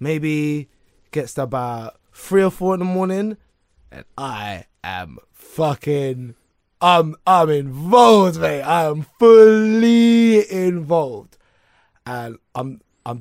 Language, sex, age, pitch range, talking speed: English, male, 20-39, 135-210 Hz, 115 wpm